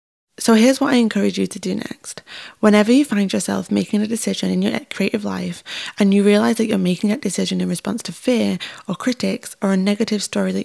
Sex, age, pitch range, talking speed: female, 20-39, 180-215 Hz, 220 wpm